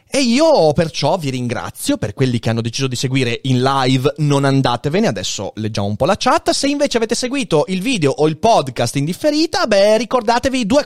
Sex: male